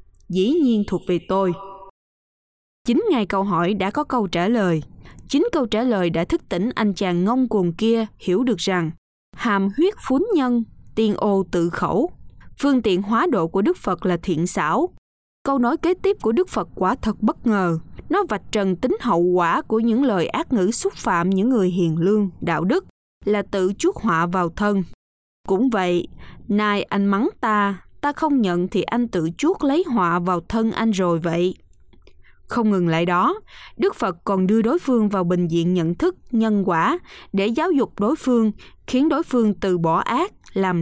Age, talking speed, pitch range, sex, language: 20-39, 195 wpm, 180-250 Hz, female, Vietnamese